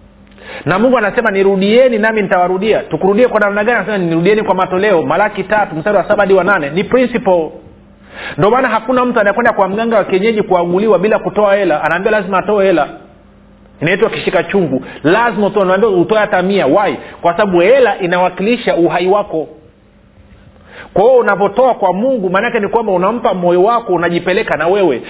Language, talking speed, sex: Swahili, 160 wpm, male